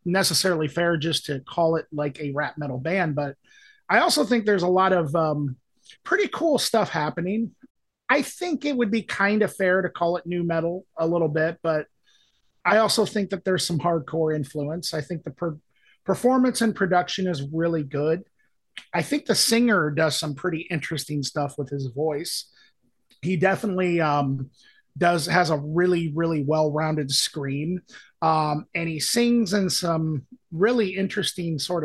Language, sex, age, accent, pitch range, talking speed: English, male, 30-49, American, 155-195 Hz, 170 wpm